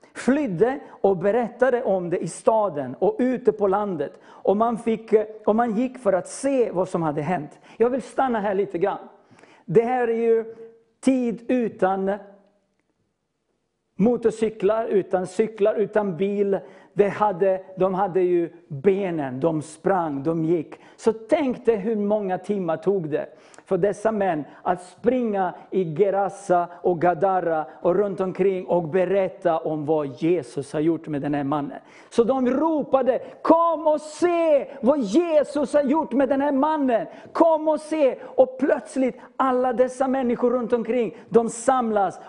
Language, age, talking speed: Swedish, 50-69, 150 wpm